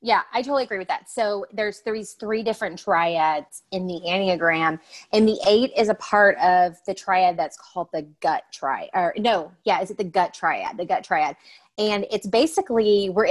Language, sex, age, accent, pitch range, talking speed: English, female, 30-49, American, 170-225 Hz, 200 wpm